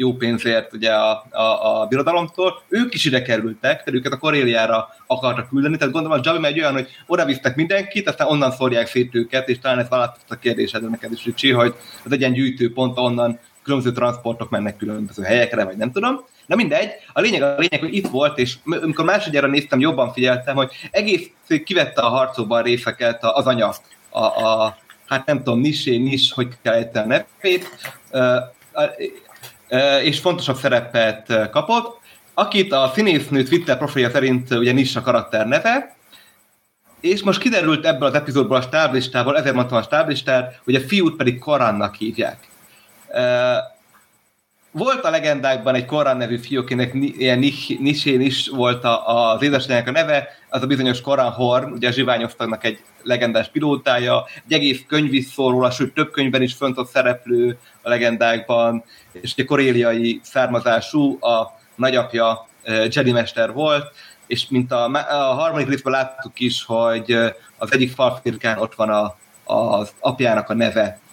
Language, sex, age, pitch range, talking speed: Hungarian, male, 30-49, 120-145 Hz, 155 wpm